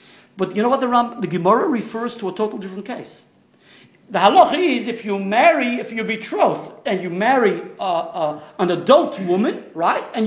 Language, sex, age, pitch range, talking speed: English, male, 50-69, 185-275 Hz, 195 wpm